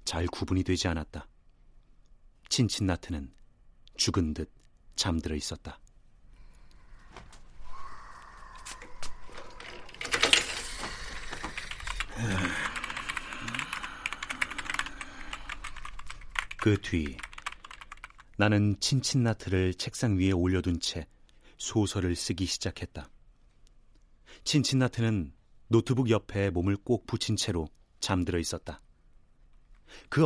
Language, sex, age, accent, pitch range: Korean, male, 40-59, native, 85-115 Hz